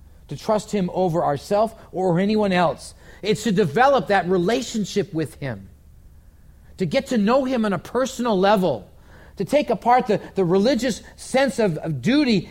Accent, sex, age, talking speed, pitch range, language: American, male, 40-59, 165 wpm, 140-225 Hz, English